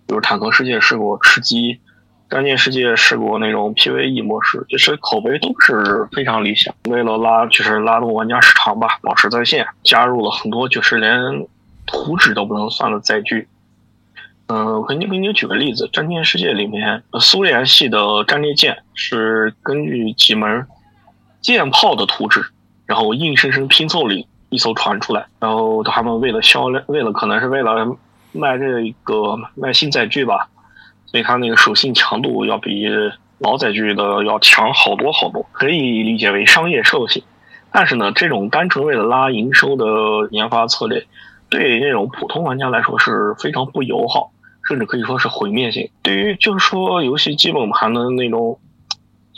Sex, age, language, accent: male, 20-39, Chinese, native